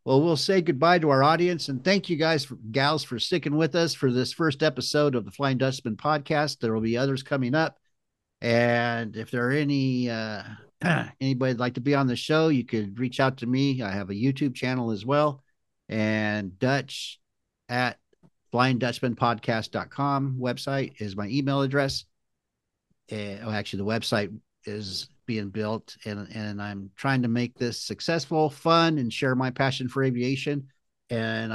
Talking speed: 175 wpm